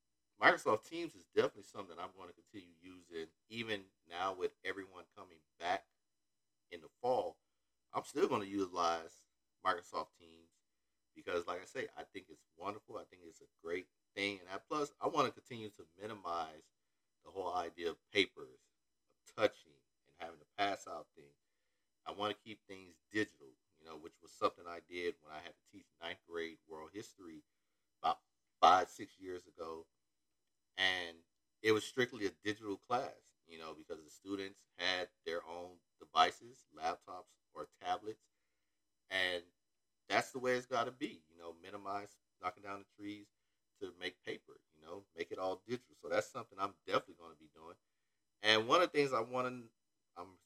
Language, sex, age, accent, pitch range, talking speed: English, male, 40-59, American, 85-105 Hz, 180 wpm